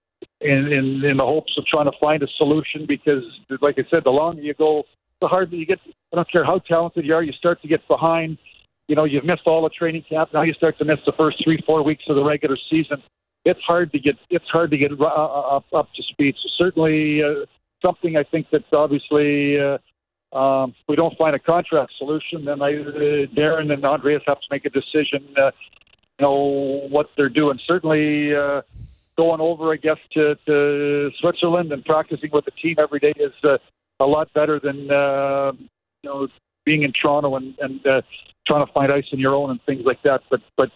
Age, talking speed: 50-69, 215 wpm